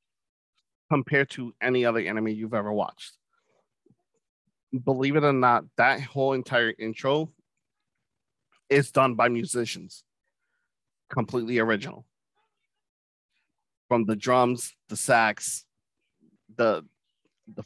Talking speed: 100 wpm